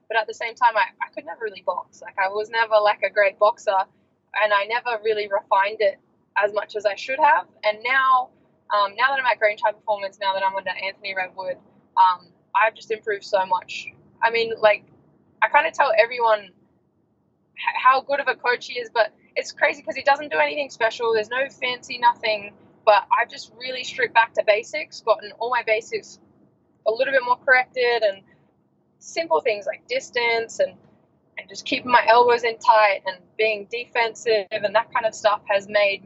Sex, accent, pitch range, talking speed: female, Australian, 200-270 Hz, 205 wpm